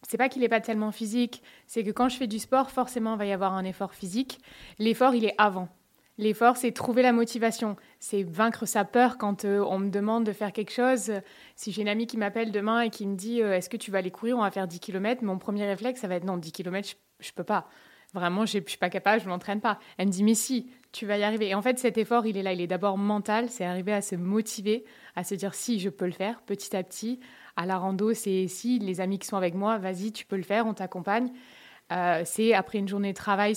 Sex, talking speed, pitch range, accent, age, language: female, 280 wpm, 190-225 Hz, French, 20-39, French